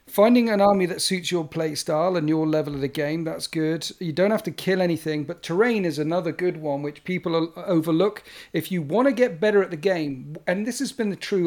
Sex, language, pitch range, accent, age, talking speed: male, English, 155-200 Hz, British, 40-59, 240 wpm